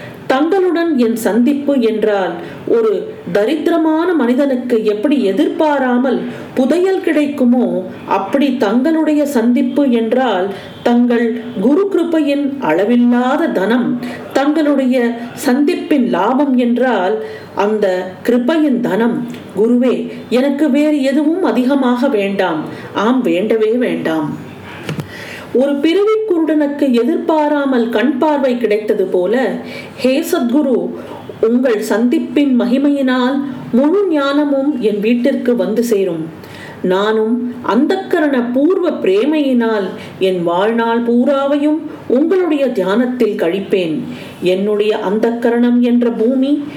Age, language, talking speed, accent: 40-59, Tamil, 80 wpm, native